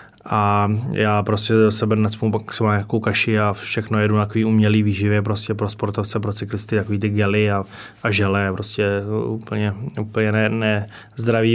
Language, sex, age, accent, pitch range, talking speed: Czech, male, 20-39, native, 105-115 Hz, 165 wpm